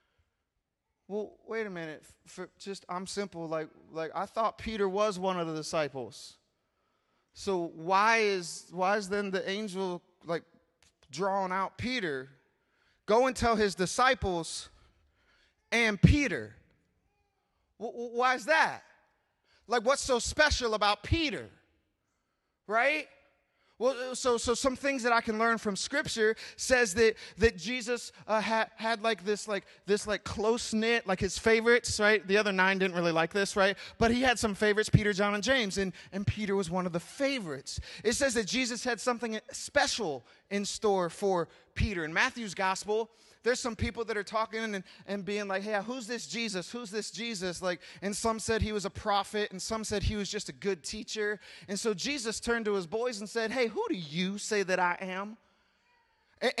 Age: 30-49